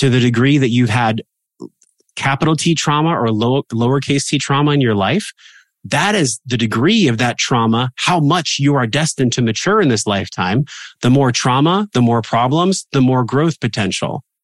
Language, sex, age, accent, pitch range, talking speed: English, male, 30-49, American, 110-135 Hz, 180 wpm